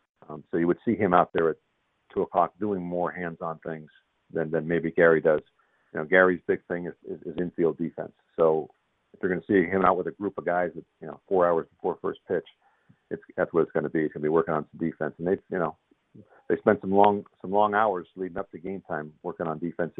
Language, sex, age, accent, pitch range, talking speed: English, male, 50-69, American, 80-95 Hz, 255 wpm